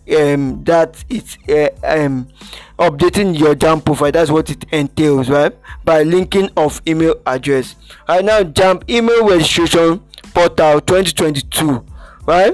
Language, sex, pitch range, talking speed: English, male, 150-180 Hz, 130 wpm